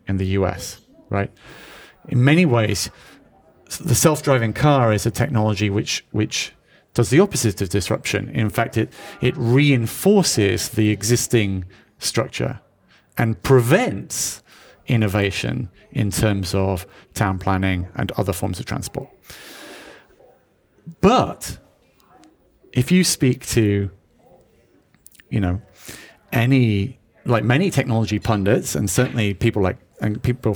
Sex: male